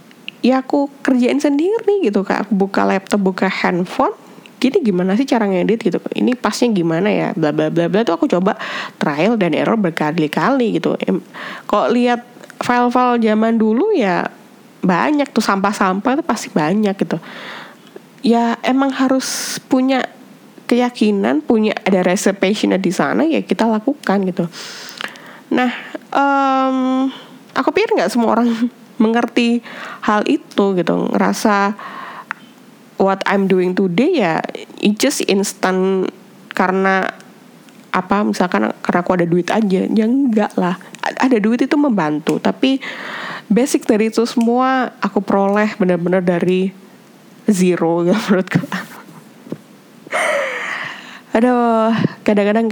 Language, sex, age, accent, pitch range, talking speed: Indonesian, female, 20-39, native, 195-255 Hz, 120 wpm